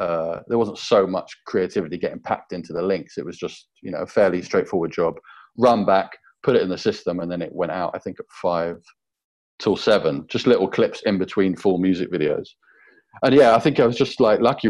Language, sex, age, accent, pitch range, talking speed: English, male, 30-49, British, 90-105 Hz, 225 wpm